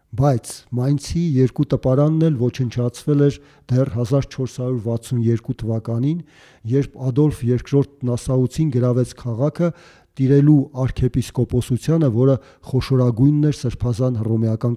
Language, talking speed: English, 90 wpm